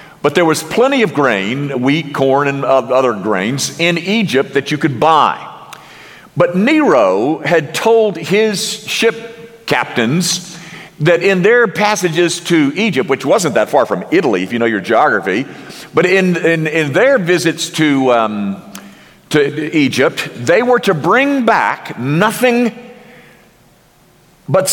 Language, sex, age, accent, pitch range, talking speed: English, male, 50-69, American, 145-190 Hz, 140 wpm